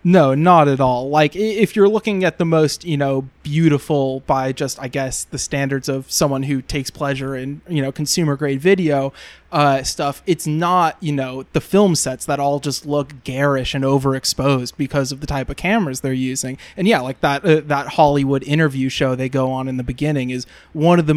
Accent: American